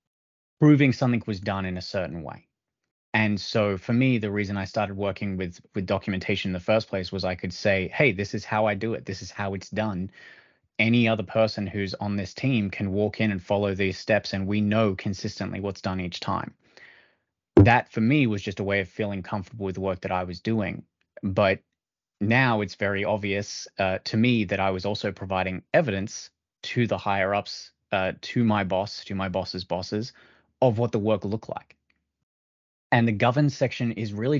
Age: 20-39